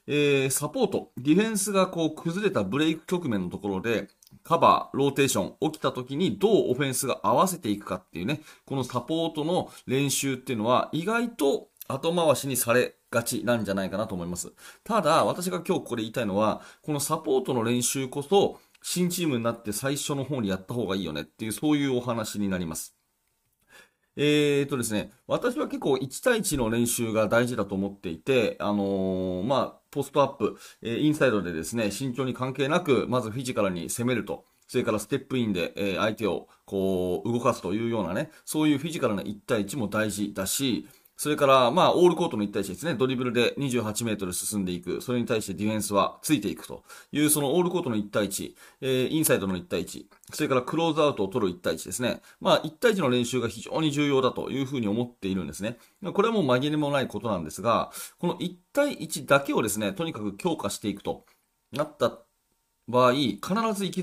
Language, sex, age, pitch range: Japanese, male, 30-49, 105-150 Hz